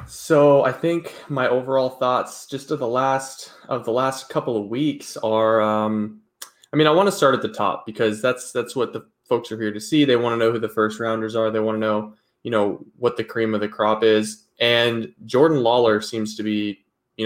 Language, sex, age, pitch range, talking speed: English, male, 20-39, 110-130 Hz, 230 wpm